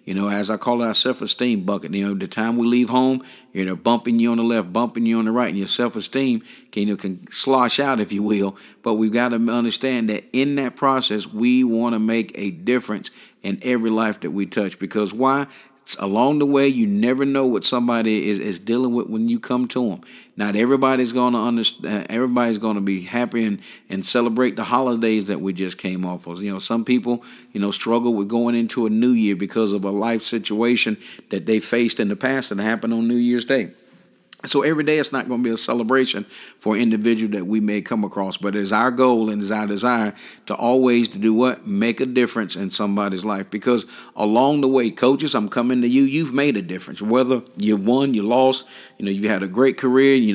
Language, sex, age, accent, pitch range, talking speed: English, male, 50-69, American, 105-125 Hz, 225 wpm